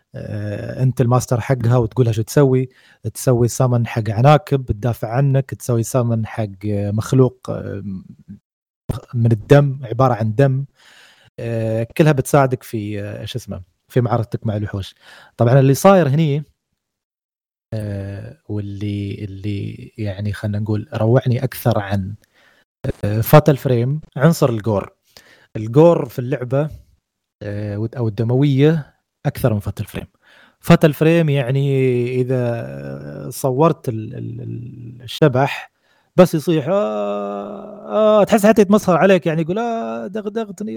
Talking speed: 110 wpm